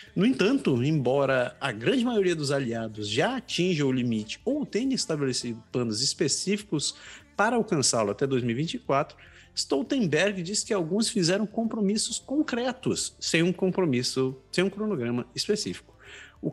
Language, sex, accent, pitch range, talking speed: Portuguese, male, Brazilian, 145-210 Hz, 130 wpm